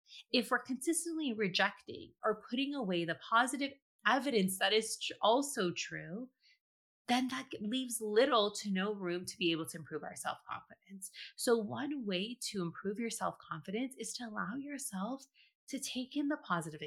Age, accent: 30-49, American